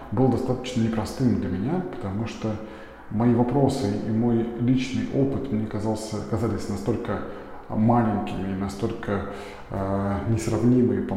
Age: 20-39